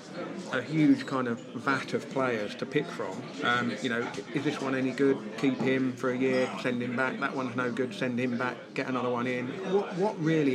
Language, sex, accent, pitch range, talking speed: English, male, British, 125-145 Hz, 230 wpm